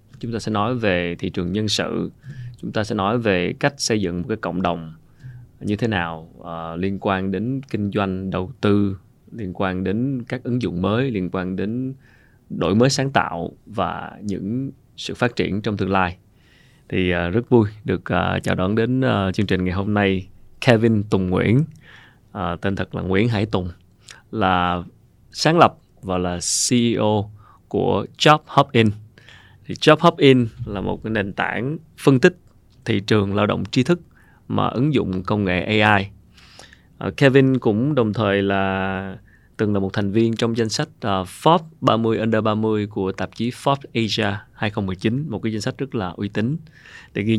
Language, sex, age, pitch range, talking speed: Vietnamese, male, 20-39, 95-120 Hz, 170 wpm